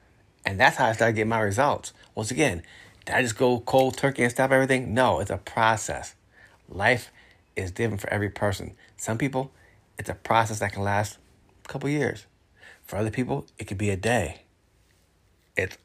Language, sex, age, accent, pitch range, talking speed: English, male, 30-49, American, 95-115 Hz, 185 wpm